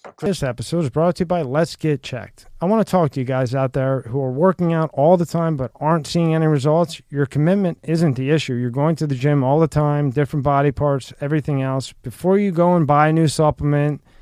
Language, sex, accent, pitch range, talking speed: English, male, American, 135-170 Hz, 240 wpm